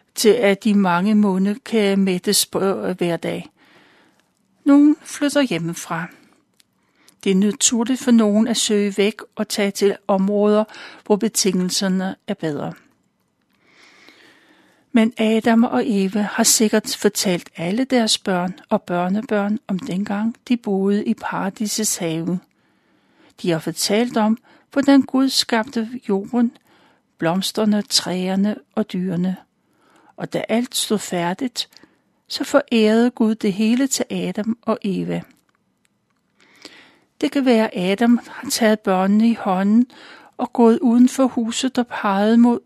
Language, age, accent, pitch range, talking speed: Danish, 60-79, native, 195-240 Hz, 125 wpm